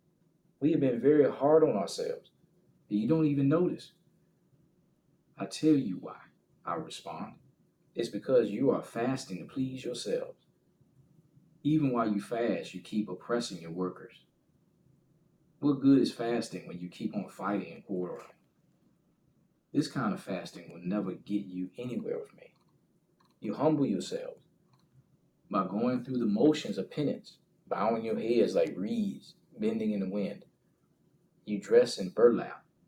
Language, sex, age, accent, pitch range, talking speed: English, male, 40-59, American, 120-175 Hz, 145 wpm